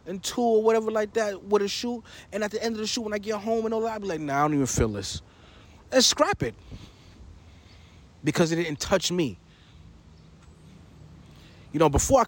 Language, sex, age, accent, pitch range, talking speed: English, male, 30-49, American, 130-205 Hz, 215 wpm